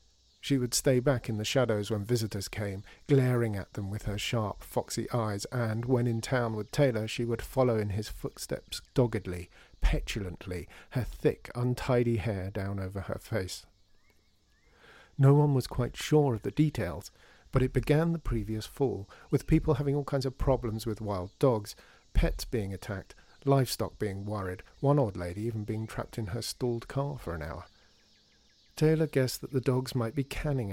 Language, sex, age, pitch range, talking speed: English, male, 50-69, 100-130 Hz, 180 wpm